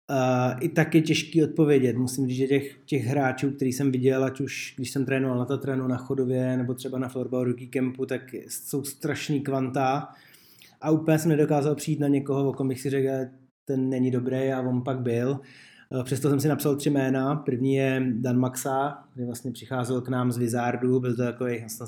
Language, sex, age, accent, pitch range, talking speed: Czech, male, 20-39, native, 125-140 Hz, 205 wpm